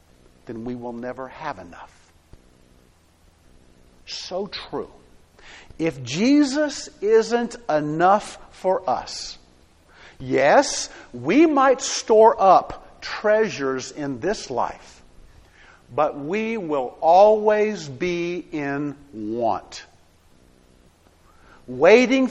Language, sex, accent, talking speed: English, male, American, 85 wpm